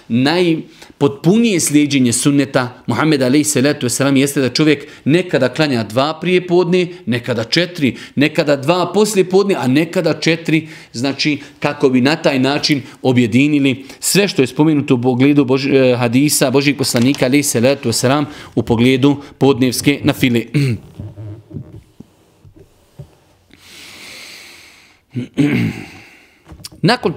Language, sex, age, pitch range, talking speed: English, male, 40-59, 130-160 Hz, 110 wpm